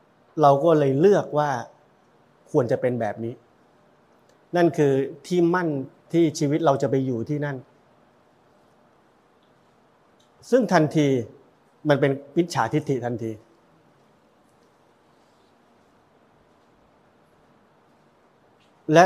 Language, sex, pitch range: Thai, male, 130-170 Hz